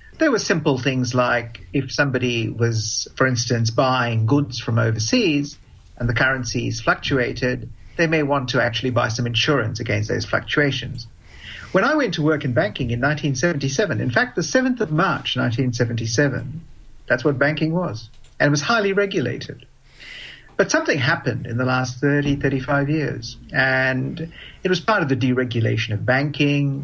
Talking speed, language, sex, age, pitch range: 160 wpm, English, male, 50-69, 120-145 Hz